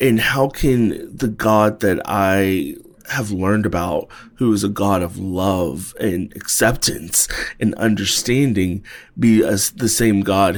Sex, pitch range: male, 95-110 Hz